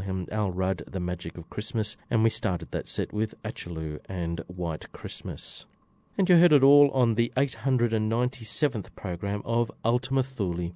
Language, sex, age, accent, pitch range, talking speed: English, male, 40-59, Australian, 95-130 Hz, 160 wpm